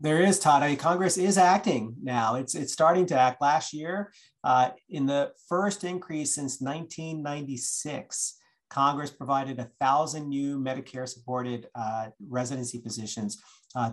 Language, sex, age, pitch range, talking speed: English, male, 40-59, 125-150 Hz, 125 wpm